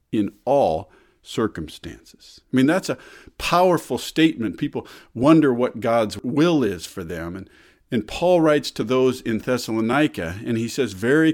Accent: American